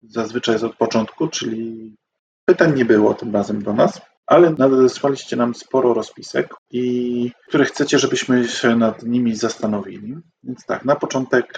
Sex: male